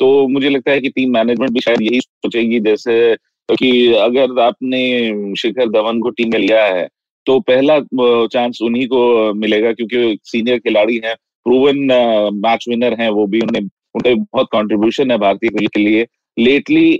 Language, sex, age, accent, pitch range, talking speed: Hindi, male, 30-49, native, 110-130 Hz, 105 wpm